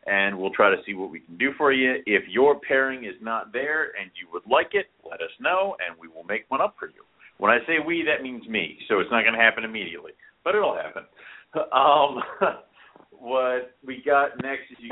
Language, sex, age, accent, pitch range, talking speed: English, male, 50-69, American, 105-125 Hz, 230 wpm